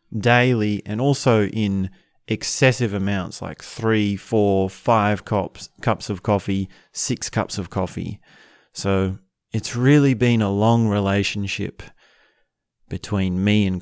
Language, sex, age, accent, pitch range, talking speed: English, male, 30-49, Australian, 100-120 Hz, 120 wpm